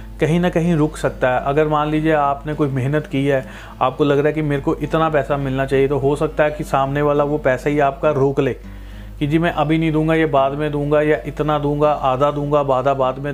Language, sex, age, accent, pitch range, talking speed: Hindi, male, 40-59, native, 140-155 Hz, 250 wpm